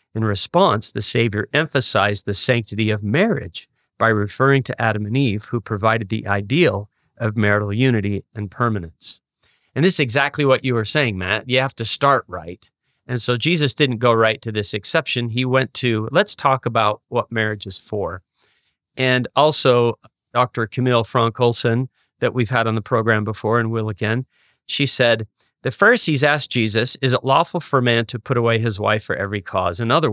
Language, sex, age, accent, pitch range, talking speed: English, male, 40-59, American, 110-135 Hz, 190 wpm